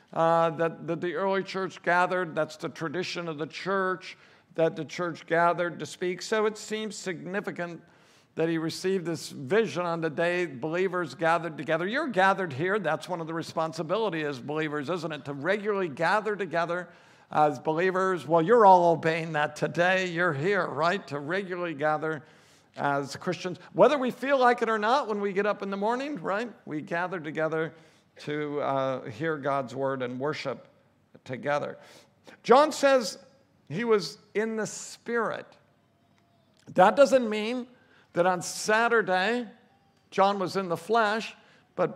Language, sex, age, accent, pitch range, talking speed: English, male, 60-79, American, 160-205 Hz, 160 wpm